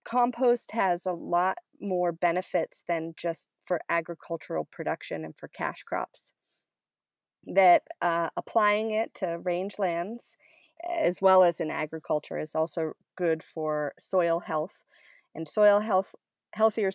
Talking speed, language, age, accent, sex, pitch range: 125 wpm, English, 40-59, American, female, 155-190 Hz